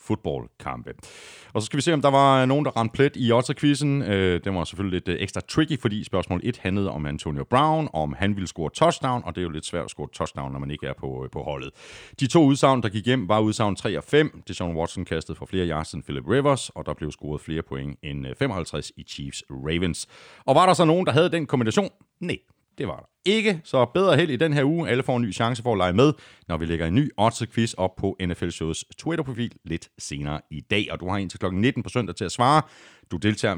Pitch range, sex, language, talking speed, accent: 80-135 Hz, male, Danish, 250 wpm, native